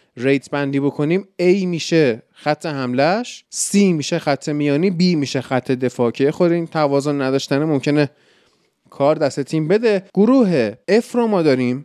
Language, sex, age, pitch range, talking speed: Persian, male, 20-39, 130-170 Hz, 145 wpm